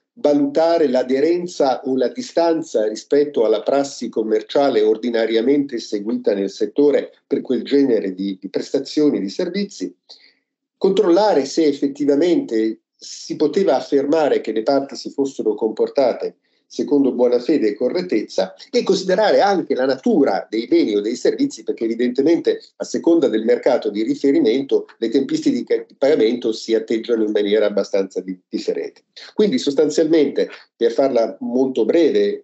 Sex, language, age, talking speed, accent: male, Italian, 50-69, 135 wpm, native